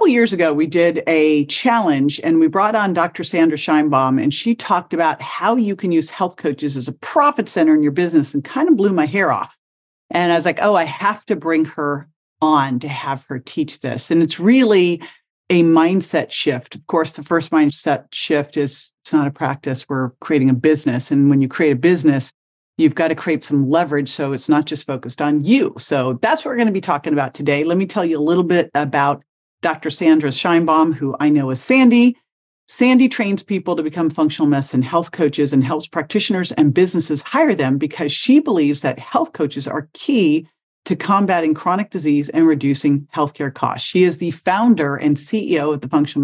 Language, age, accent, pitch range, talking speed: English, 50-69, American, 145-180 Hz, 210 wpm